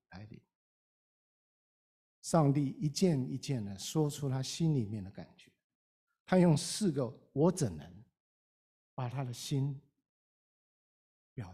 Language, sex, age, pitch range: Chinese, male, 50-69, 120-175 Hz